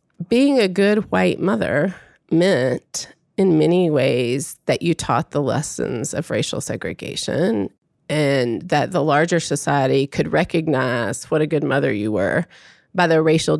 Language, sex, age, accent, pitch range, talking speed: English, female, 30-49, American, 145-190 Hz, 145 wpm